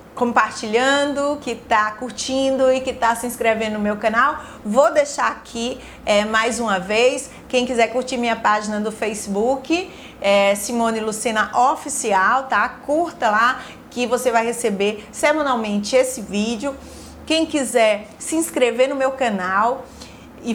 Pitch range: 215-260 Hz